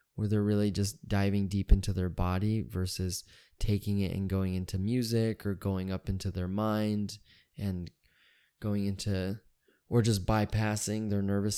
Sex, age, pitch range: male, 20-39, 95-110 Hz